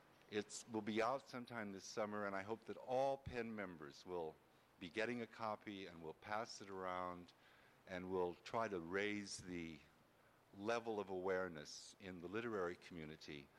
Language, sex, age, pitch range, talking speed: English, male, 50-69, 90-110 Hz, 165 wpm